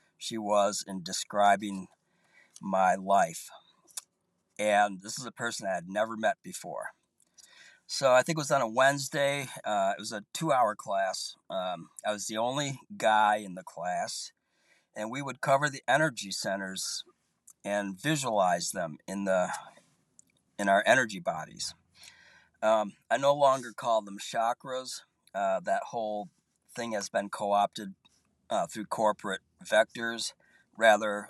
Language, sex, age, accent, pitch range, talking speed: English, male, 40-59, American, 100-120 Hz, 140 wpm